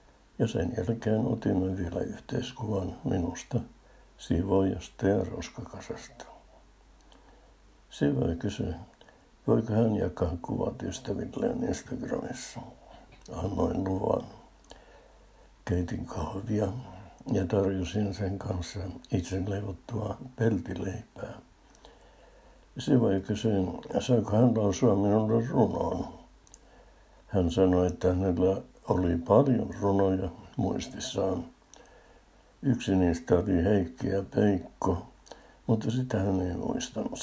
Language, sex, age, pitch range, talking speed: Finnish, male, 60-79, 90-105 Hz, 85 wpm